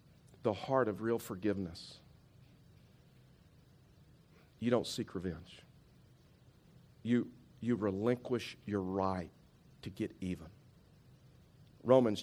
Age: 50-69